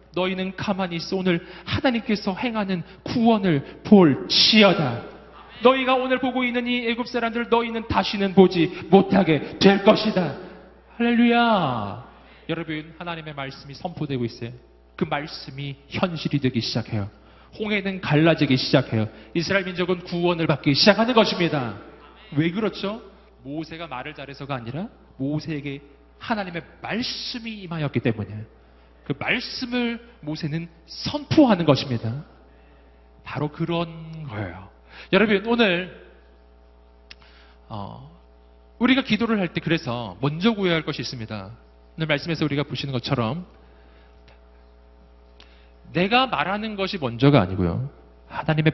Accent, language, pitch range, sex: native, Korean, 115-195 Hz, male